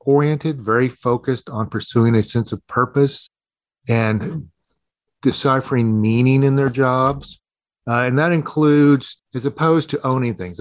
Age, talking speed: 40-59, 135 wpm